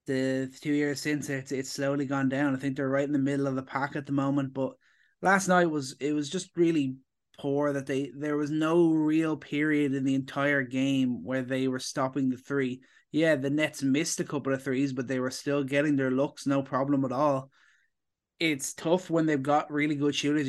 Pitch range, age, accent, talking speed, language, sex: 135-155 Hz, 20-39, Irish, 220 wpm, English, male